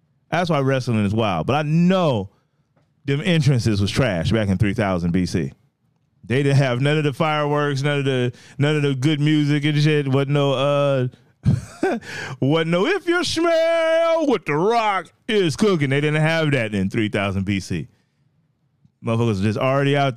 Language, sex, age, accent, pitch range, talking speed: English, male, 30-49, American, 125-155 Hz, 175 wpm